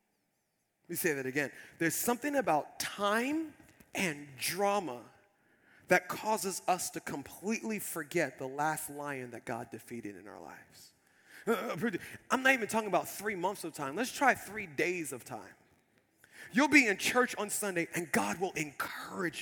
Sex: male